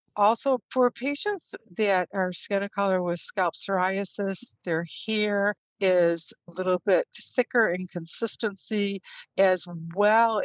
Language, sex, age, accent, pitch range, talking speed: English, female, 60-79, American, 175-210 Hz, 125 wpm